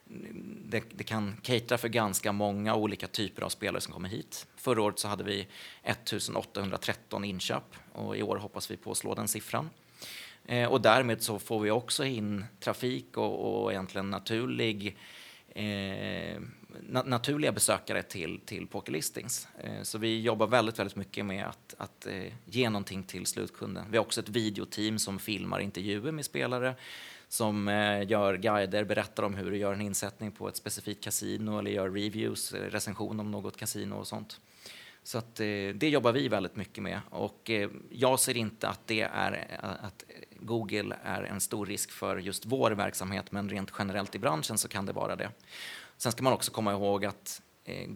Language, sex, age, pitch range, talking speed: Swedish, male, 30-49, 100-115 Hz, 180 wpm